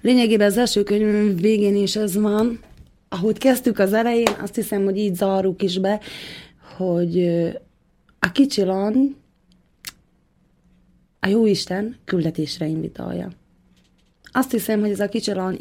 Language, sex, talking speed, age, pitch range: Slovak, female, 125 wpm, 30-49, 175-210 Hz